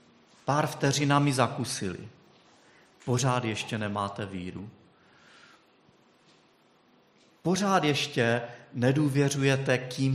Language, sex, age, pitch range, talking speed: Czech, male, 40-59, 105-125 Hz, 65 wpm